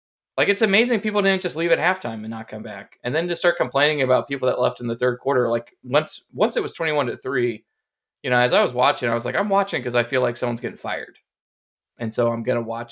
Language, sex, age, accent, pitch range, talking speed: English, male, 20-39, American, 115-145 Hz, 270 wpm